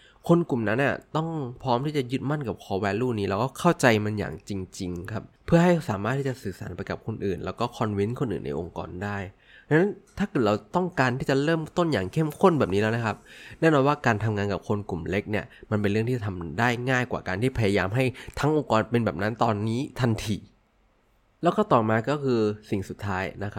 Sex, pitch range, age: male, 100-130 Hz, 20-39